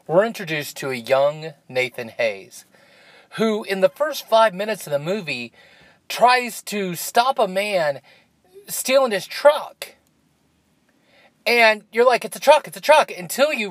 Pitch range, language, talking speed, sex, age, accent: 135-205 Hz, English, 155 wpm, male, 30-49, American